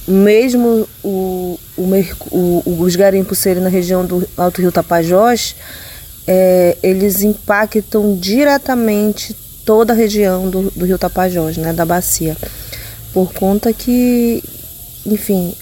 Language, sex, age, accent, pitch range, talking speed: Portuguese, female, 20-39, Brazilian, 185-225 Hz, 120 wpm